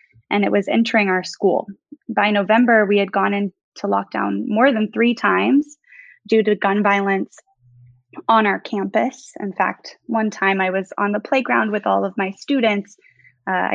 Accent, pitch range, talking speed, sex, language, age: American, 195-230 Hz, 170 wpm, female, English, 10-29